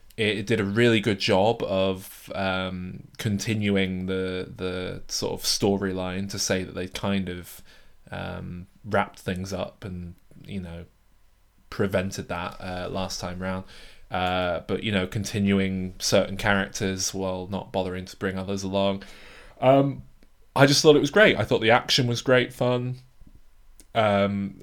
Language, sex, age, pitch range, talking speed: English, male, 20-39, 95-110 Hz, 150 wpm